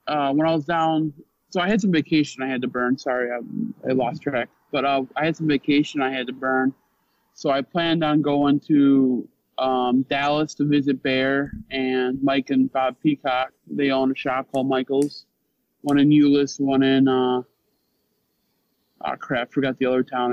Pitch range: 130-155 Hz